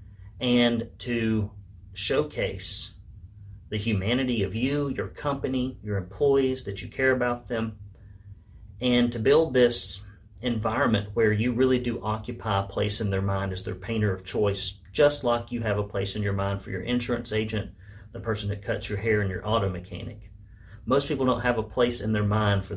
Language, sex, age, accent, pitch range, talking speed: English, male, 30-49, American, 100-120 Hz, 180 wpm